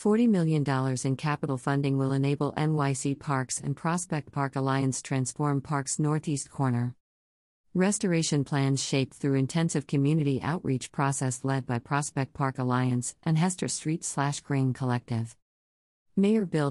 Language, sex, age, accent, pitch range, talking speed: English, female, 50-69, American, 130-155 Hz, 135 wpm